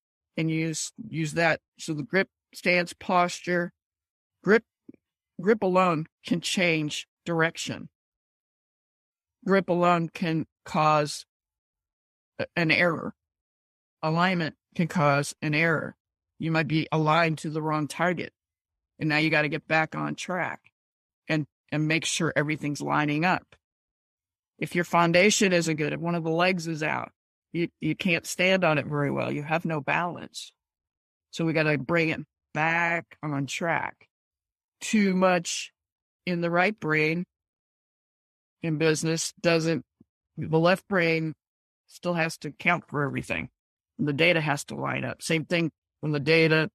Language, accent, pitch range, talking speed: English, American, 145-170 Hz, 145 wpm